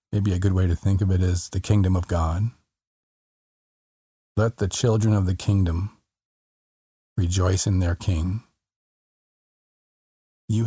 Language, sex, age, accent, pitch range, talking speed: English, male, 40-59, American, 90-105 Hz, 135 wpm